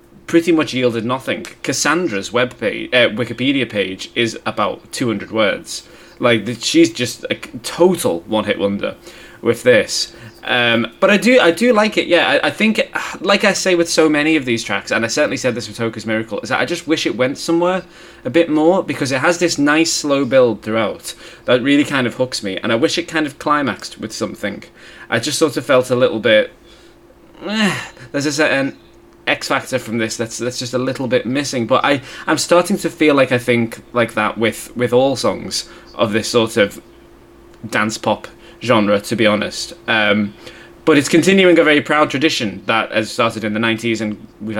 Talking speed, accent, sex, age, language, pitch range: 200 wpm, British, male, 20-39, English, 115-165 Hz